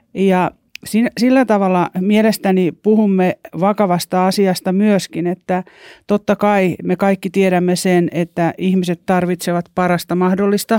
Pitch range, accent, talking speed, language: 175-210 Hz, native, 110 wpm, Finnish